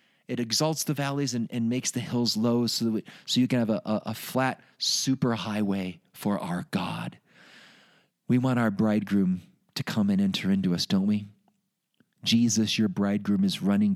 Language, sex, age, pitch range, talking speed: English, male, 40-59, 100-150 Hz, 185 wpm